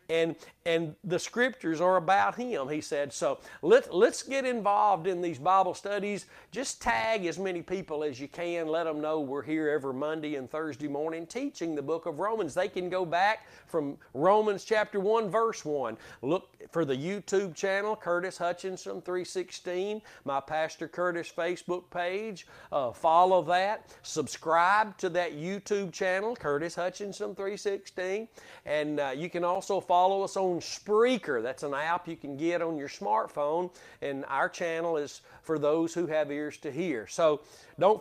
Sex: male